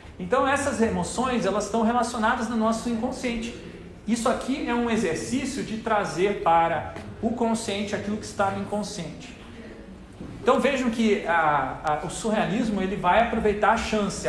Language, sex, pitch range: Portuguese, male, 185-230 Hz